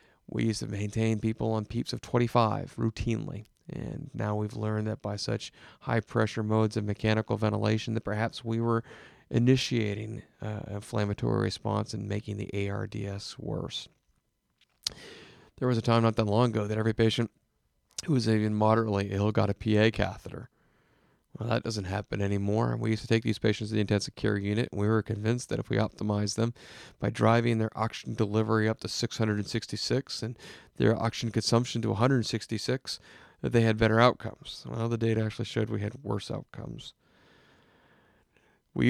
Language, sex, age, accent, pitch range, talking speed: English, male, 40-59, American, 105-115 Hz, 170 wpm